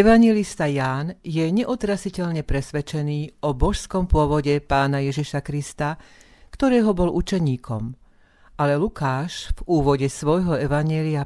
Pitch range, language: 145-180 Hz, Slovak